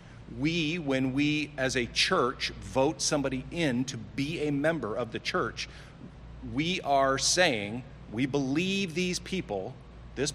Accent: American